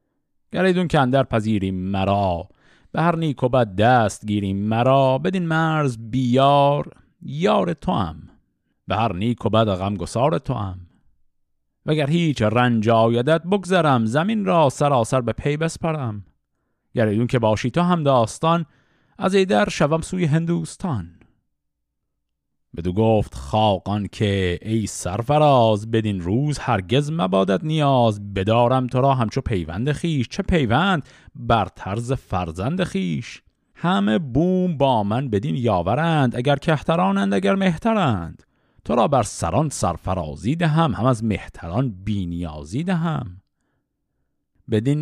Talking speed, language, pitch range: 125 wpm, Persian, 105-155 Hz